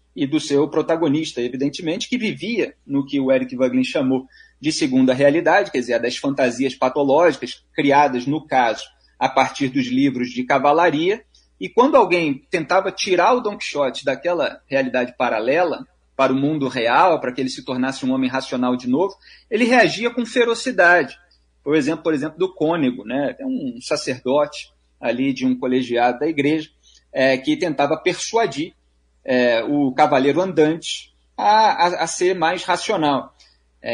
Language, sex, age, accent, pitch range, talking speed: Portuguese, male, 30-49, Brazilian, 130-210 Hz, 155 wpm